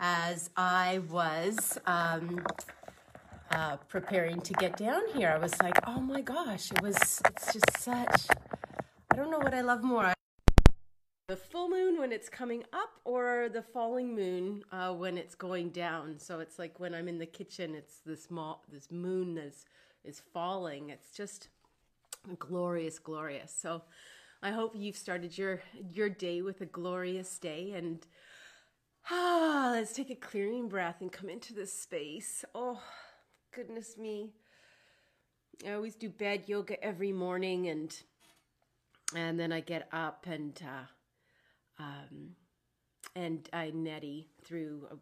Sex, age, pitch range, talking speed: female, 30-49, 160-205 Hz, 145 wpm